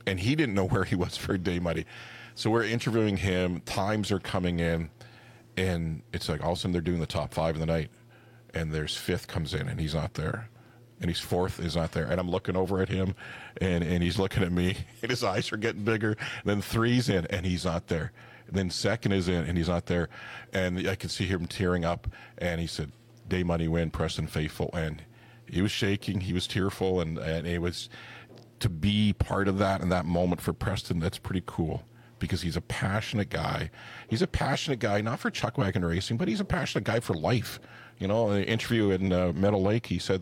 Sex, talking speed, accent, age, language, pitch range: male, 225 wpm, American, 40-59, English, 85-115 Hz